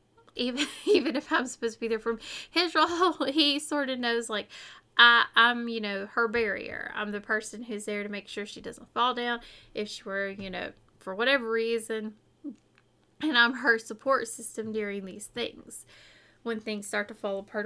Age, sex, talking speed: 20-39, female, 190 wpm